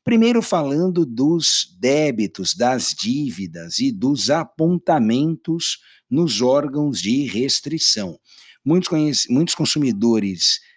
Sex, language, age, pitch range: male, Portuguese, 60-79, 105-165 Hz